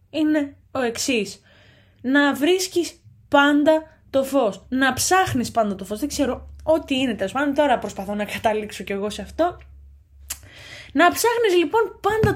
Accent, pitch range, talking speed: native, 230-315 Hz, 150 wpm